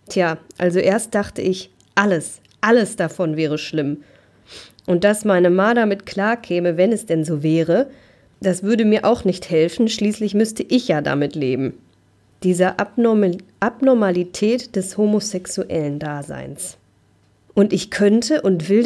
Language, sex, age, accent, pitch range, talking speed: German, female, 20-39, German, 165-220 Hz, 140 wpm